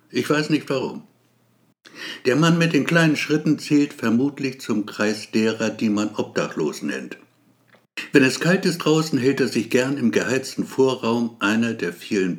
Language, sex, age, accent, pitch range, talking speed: German, male, 60-79, German, 115-150 Hz, 165 wpm